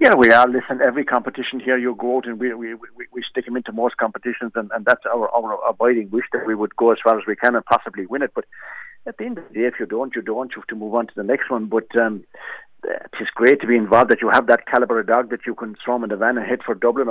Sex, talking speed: male, 310 wpm